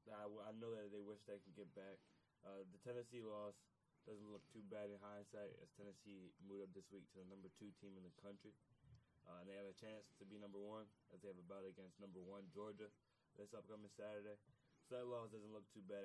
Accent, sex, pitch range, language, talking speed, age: American, male, 95-115 Hz, English, 240 wpm, 10-29